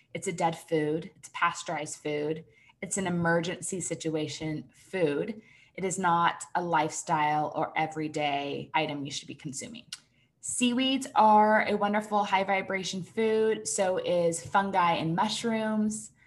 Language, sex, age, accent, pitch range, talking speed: English, female, 20-39, American, 170-200 Hz, 135 wpm